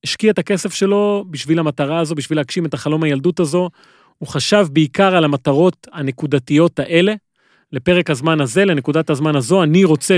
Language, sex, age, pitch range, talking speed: Hebrew, male, 30-49, 145-180 Hz, 165 wpm